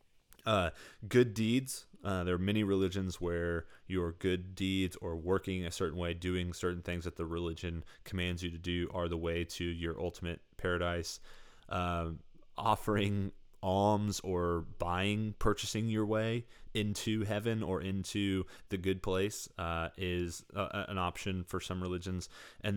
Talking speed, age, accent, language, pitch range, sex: 150 wpm, 20-39, American, English, 85-95 Hz, male